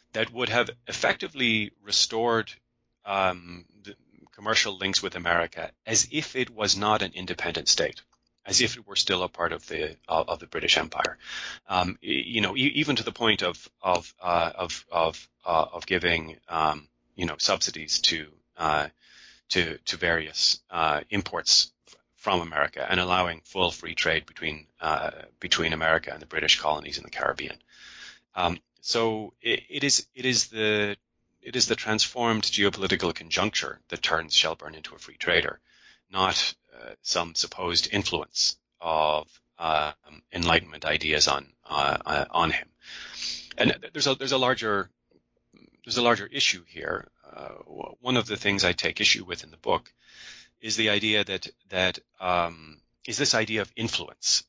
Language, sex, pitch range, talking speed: English, male, 80-110 Hz, 145 wpm